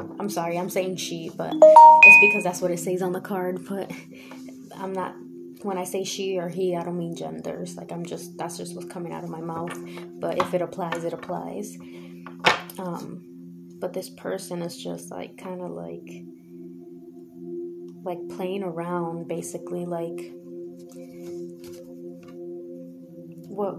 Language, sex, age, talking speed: English, female, 20-39, 155 wpm